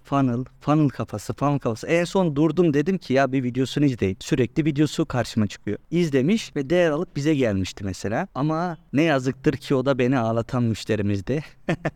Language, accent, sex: Turkish, native, male